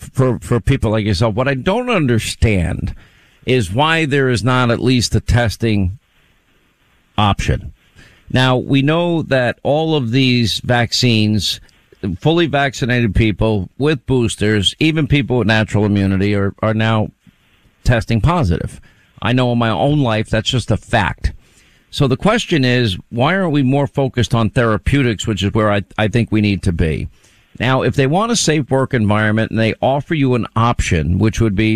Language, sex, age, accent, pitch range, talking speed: English, male, 50-69, American, 105-135 Hz, 170 wpm